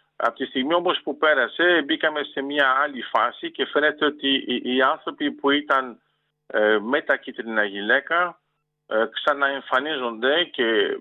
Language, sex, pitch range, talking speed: Greek, male, 125-175 Hz, 140 wpm